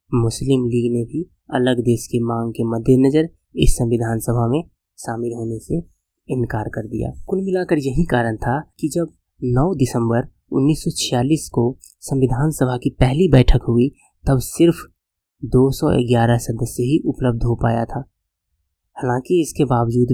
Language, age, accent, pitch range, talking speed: Hindi, 20-39, native, 120-140 Hz, 150 wpm